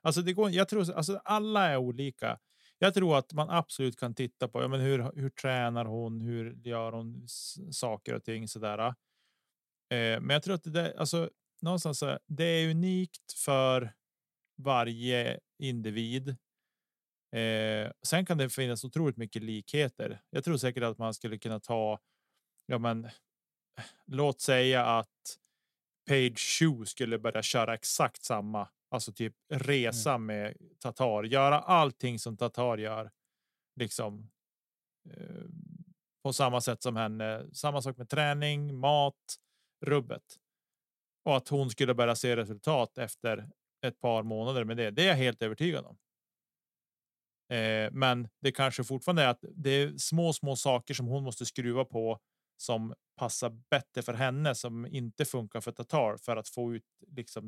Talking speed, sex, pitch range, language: 145 wpm, male, 115-145 Hz, Swedish